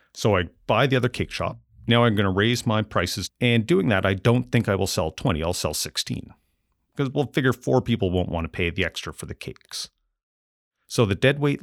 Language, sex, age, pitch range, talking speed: English, male, 40-59, 90-120 Hz, 225 wpm